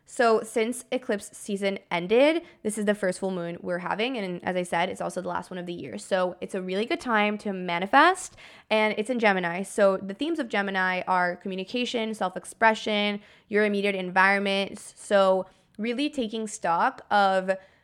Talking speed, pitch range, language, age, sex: 180 wpm, 190-225 Hz, English, 20-39, female